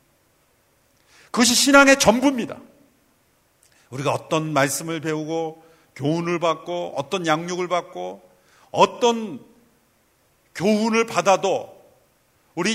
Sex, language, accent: male, Korean, native